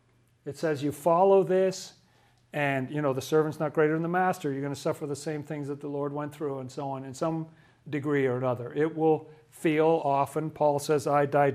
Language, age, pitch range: English, 40-59, 130-155 Hz